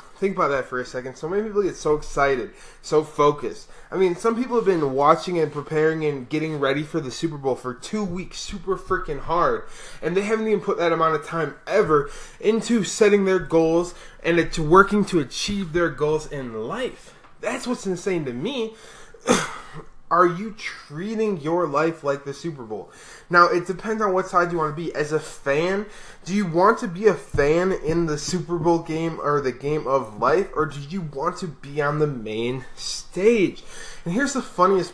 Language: English